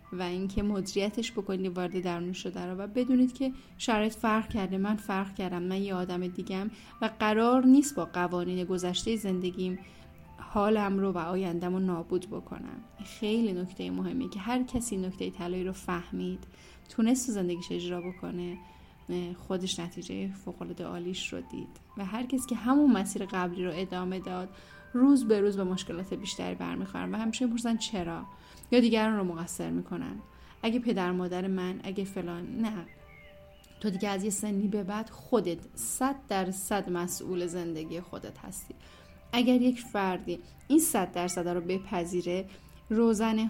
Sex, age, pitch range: female, 10-29, 180-215 Hz